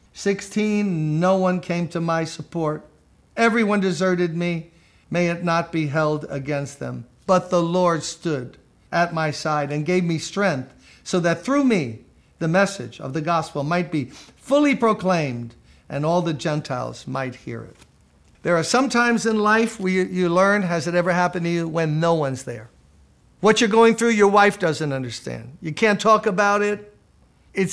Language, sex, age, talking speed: English, male, 50-69, 175 wpm